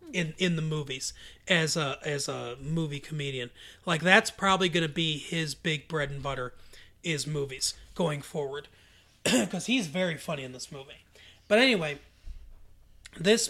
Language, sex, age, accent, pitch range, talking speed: English, male, 30-49, American, 140-180 Hz, 155 wpm